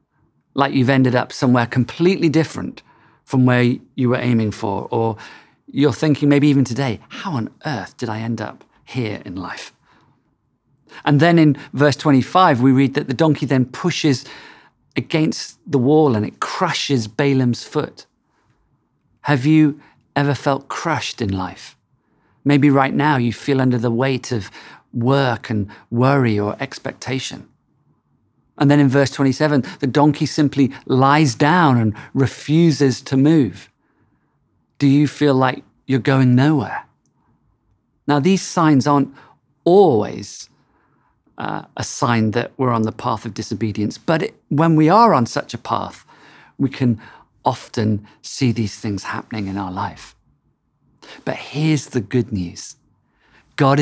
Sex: male